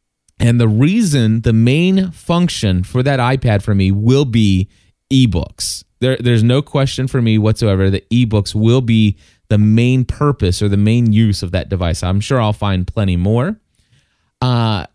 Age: 20-39